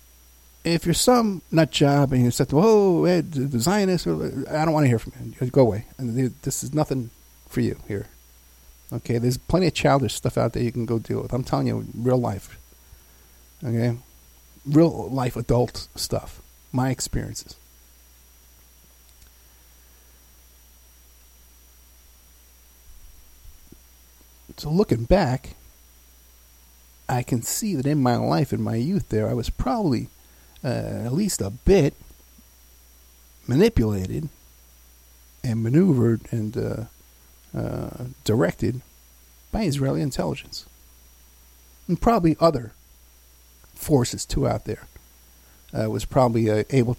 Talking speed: 125 wpm